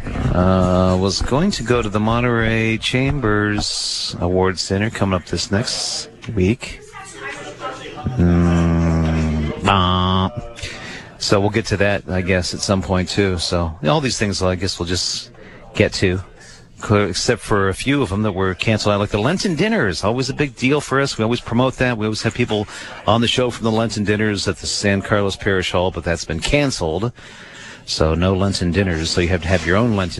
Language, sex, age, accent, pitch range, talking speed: English, male, 40-59, American, 90-120 Hz, 200 wpm